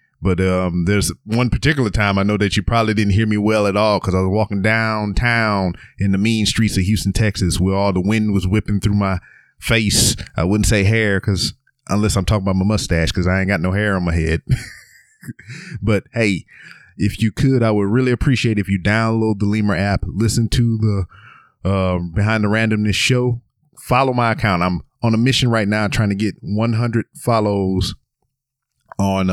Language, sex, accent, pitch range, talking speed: English, male, American, 95-110 Hz, 195 wpm